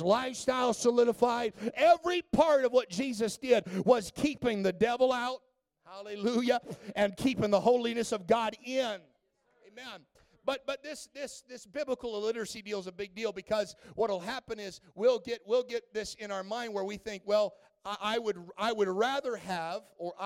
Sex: male